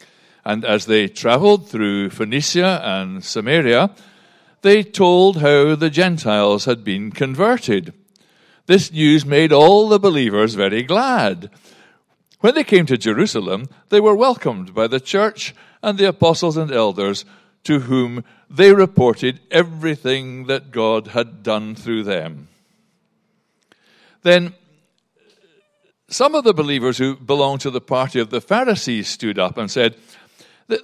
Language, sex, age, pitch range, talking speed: English, male, 60-79, 130-200 Hz, 135 wpm